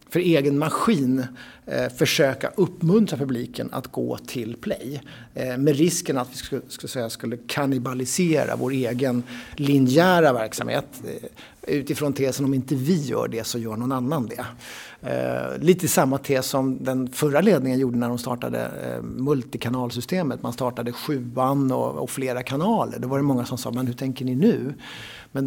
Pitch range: 125-150 Hz